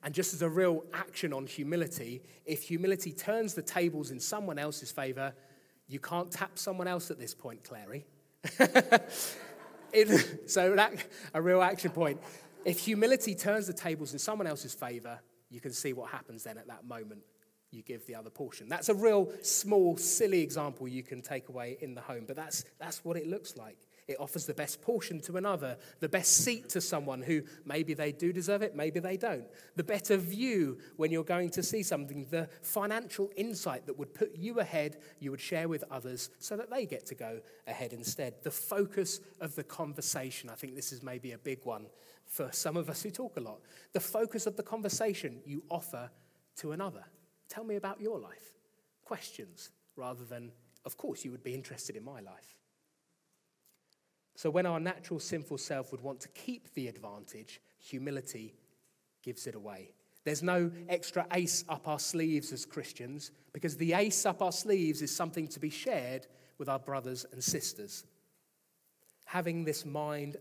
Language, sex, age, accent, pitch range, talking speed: English, male, 30-49, British, 140-190 Hz, 185 wpm